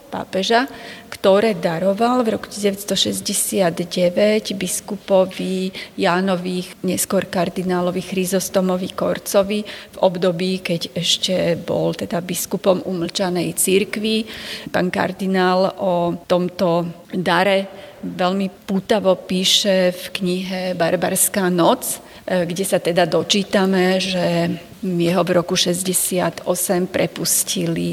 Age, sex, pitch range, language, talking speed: 30-49, female, 175-200 Hz, Slovak, 90 wpm